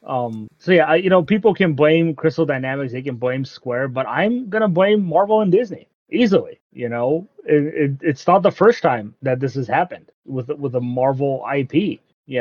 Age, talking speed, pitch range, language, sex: 30-49, 185 wpm, 135-175 Hz, English, male